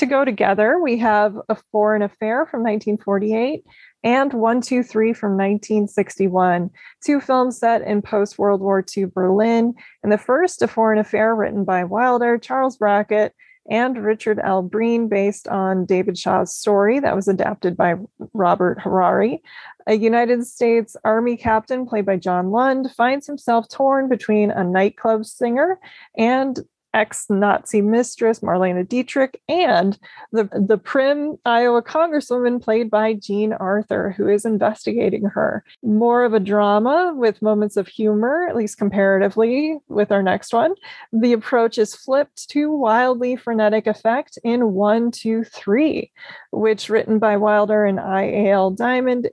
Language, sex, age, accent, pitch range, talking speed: English, female, 20-39, American, 205-245 Hz, 145 wpm